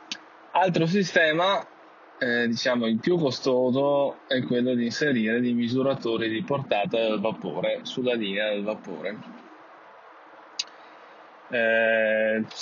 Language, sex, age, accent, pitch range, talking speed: Italian, male, 20-39, native, 115-135 Hz, 105 wpm